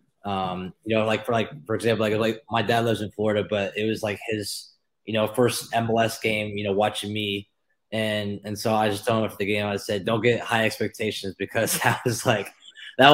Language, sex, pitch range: English, male, 100-110 Hz